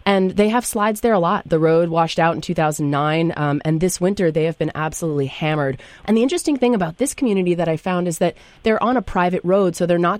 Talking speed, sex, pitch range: 245 wpm, female, 150-180 Hz